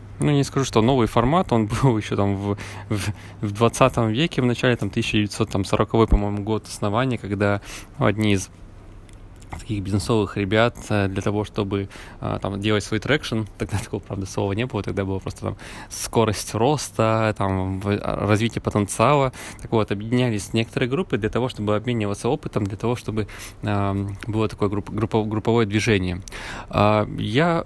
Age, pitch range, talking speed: 20-39, 100-120 Hz, 150 wpm